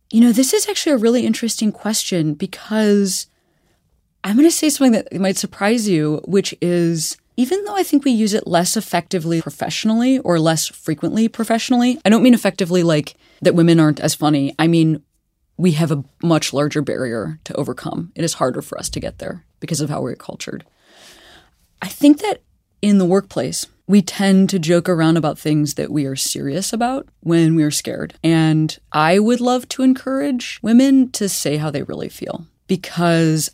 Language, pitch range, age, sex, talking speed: English, 150-205 Hz, 20-39, female, 185 wpm